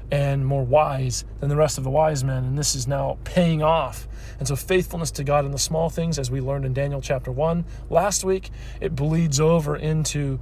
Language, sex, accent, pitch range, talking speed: English, male, American, 125-155 Hz, 220 wpm